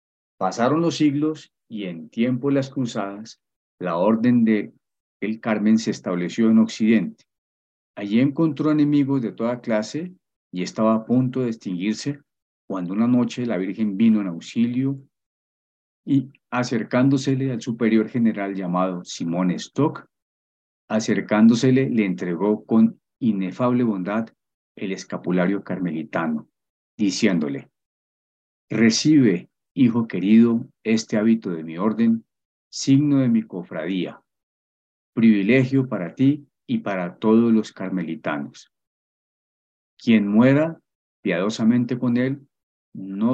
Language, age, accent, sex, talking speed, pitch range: Spanish, 40-59, Colombian, male, 115 wpm, 100-130 Hz